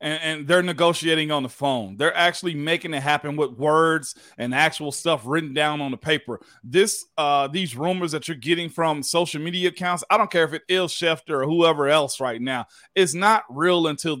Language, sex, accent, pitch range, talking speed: English, male, American, 140-175 Hz, 205 wpm